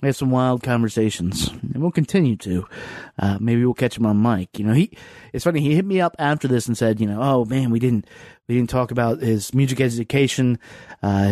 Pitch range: 105-145 Hz